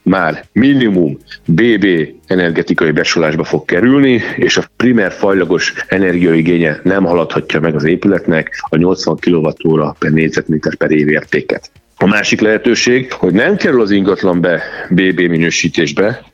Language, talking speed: Hungarian, 130 wpm